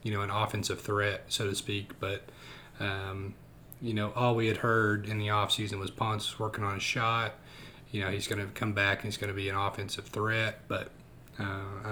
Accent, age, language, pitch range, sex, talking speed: American, 30-49, English, 100-115 Hz, male, 215 wpm